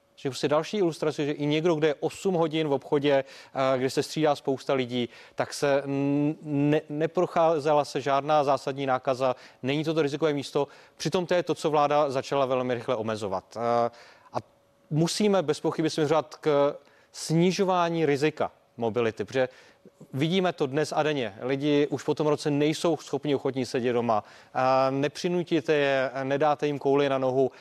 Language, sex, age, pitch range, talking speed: Czech, male, 30-49, 135-155 Hz, 160 wpm